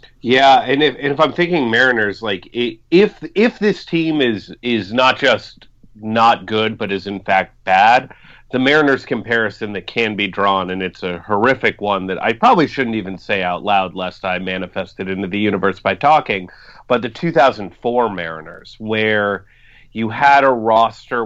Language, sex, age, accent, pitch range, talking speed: English, male, 30-49, American, 100-155 Hz, 175 wpm